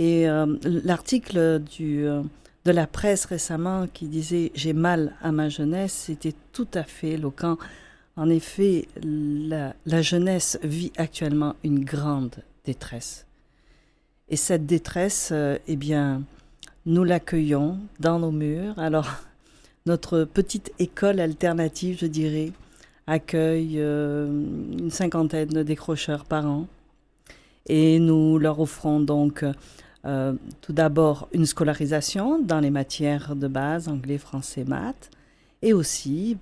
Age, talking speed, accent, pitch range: 50-69, 130 wpm, French, 150-180 Hz